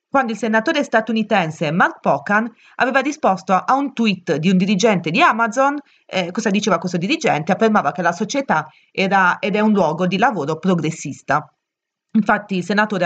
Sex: female